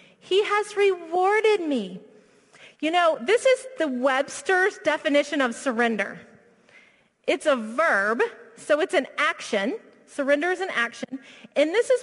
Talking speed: 135 wpm